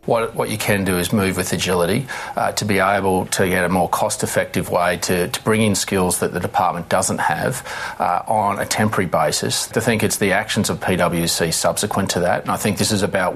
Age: 40-59